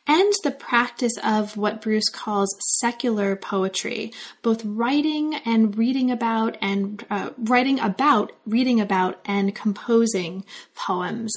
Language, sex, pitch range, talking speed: English, female, 205-245 Hz, 120 wpm